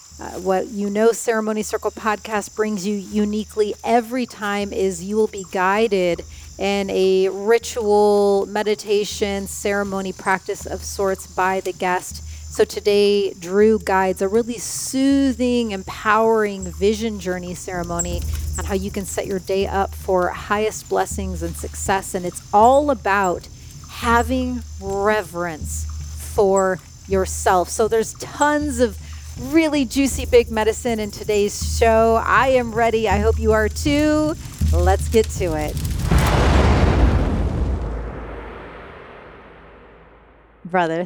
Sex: female